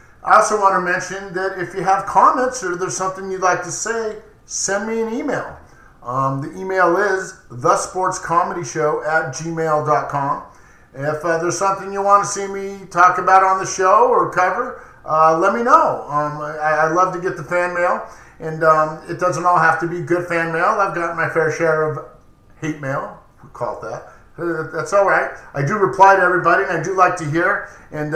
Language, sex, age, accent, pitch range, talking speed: English, male, 50-69, American, 155-185 Hz, 200 wpm